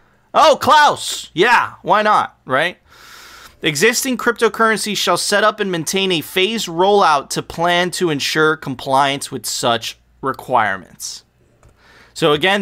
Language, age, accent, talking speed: English, 30-49, American, 125 wpm